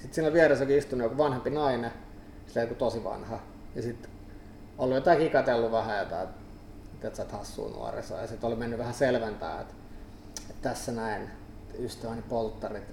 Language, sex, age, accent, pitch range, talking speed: Finnish, male, 30-49, native, 105-125 Hz, 170 wpm